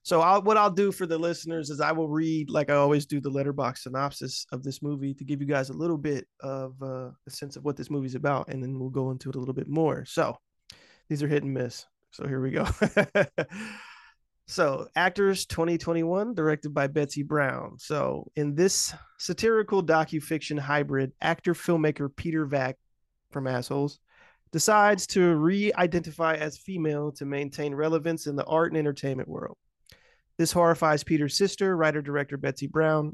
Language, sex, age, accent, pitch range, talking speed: English, male, 20-39, American, 140-170 Hz, 185 wpm